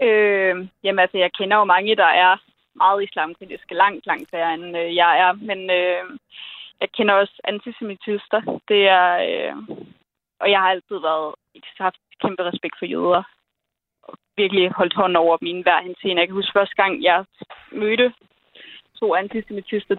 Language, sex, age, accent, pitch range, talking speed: Danish, female, 20-39, native, 190-225 Hz, 170 wpm